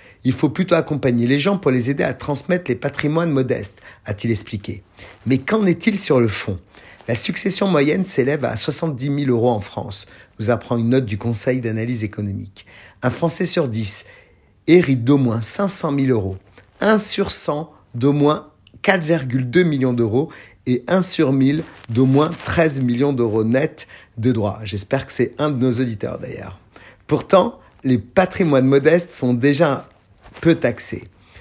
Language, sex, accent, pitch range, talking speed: French, male, French, 115-160 Hz, 165 wpm